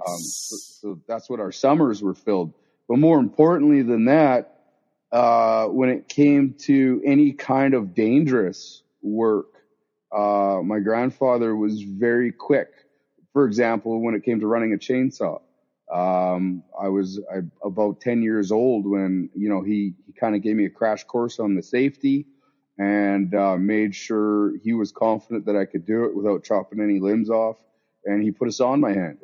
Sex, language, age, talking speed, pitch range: male, English, 30-49, 175 wpm, 100-125 Hz